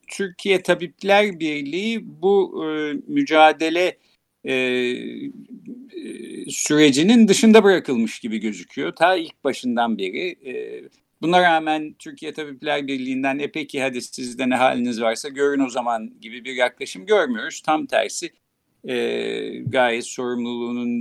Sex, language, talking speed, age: male, Turkish, 115 wpm, 50-69